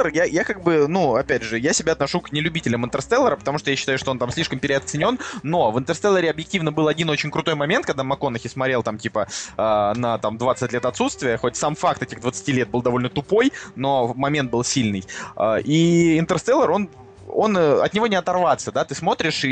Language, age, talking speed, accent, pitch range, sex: Russian, 20-39, 205 wpm, native, 125-155 Hz, male